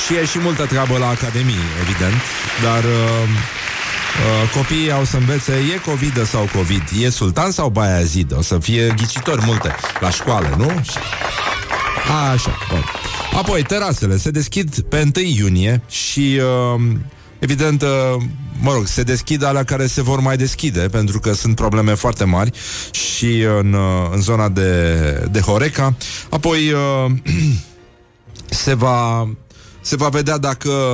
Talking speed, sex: 145 wpm, male